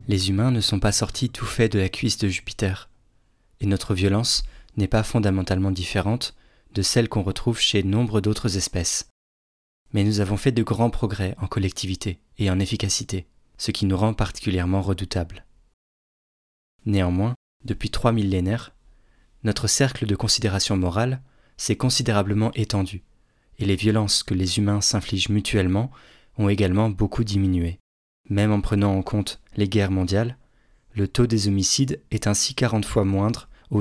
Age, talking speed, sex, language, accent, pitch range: 20-39, 155 wpm, male, French, French, 95-115 Hz